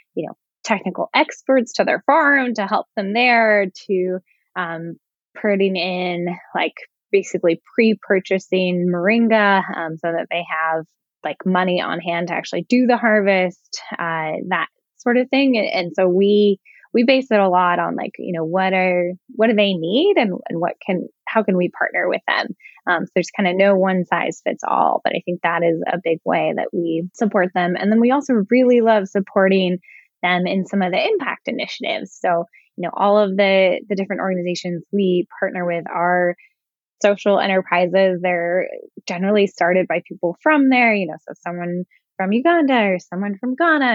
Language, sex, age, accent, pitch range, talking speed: English, female, 10-29, American, 175-210 Hz, 185 wpm